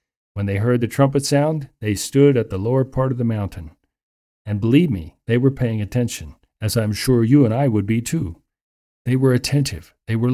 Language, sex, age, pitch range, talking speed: English, male, 50-69, 95-125 Hz, 210 wpm